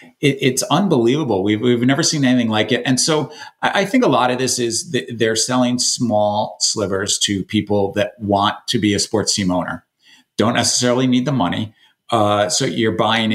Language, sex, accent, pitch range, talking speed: English, male, American, 105-130 Hz, 190 wpm